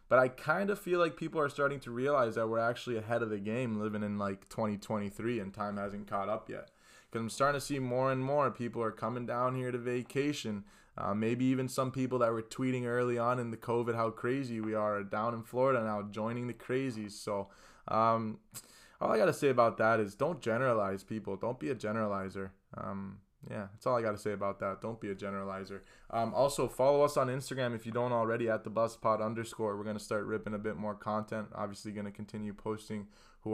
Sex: male